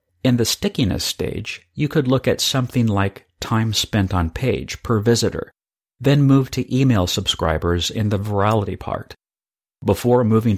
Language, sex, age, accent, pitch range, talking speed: English, male, 50-69, American, 95-125 Hz, 155 wpm